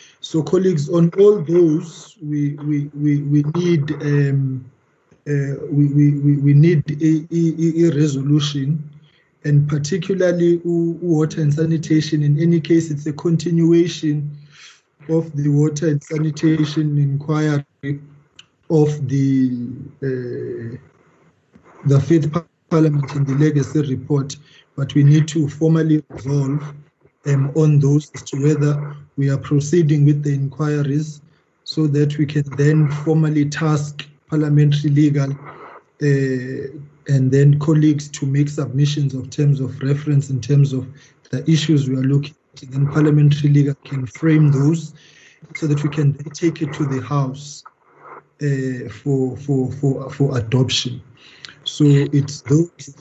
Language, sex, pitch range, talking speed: English, male, 140-155 Hz, 135 wpm